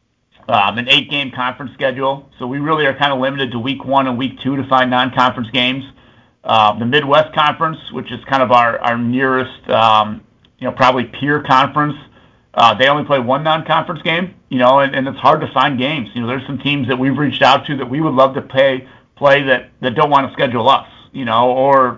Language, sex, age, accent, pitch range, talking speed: English, male, 50-69, American, 125-140 Hz, 225 wpm